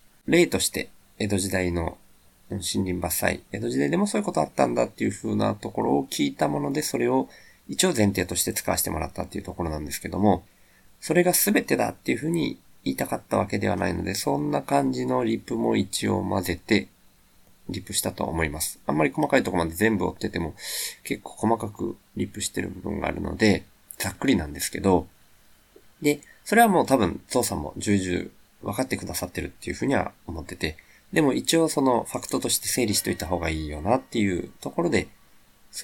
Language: Japanese